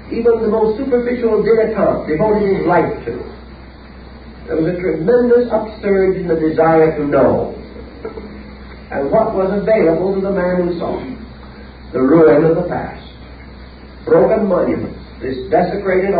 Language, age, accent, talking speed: English, 40-59, American, 135 wpm